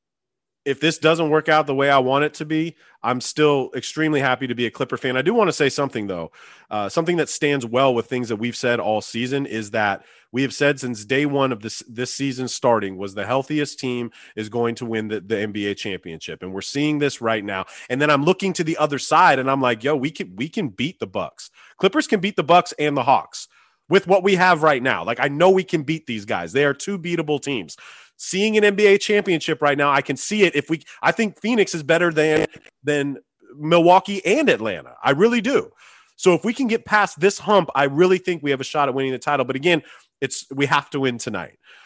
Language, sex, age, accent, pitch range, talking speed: English, male, 30-49, American, 130-175 Hz, 240 wpm